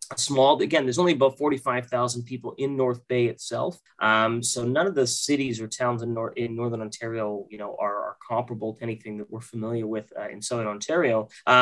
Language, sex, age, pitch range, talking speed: English, male, 30-49, 125-170 Hz, 210 wpm